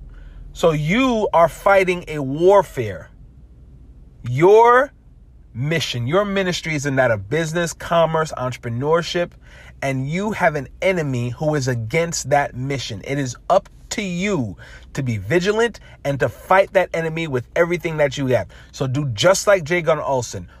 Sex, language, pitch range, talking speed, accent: male, English, 130-175 Hz, 150 wpm, American